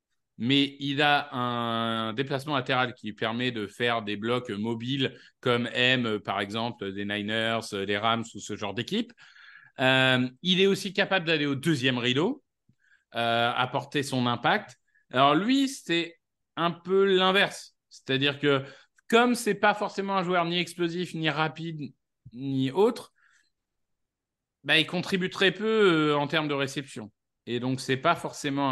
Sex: male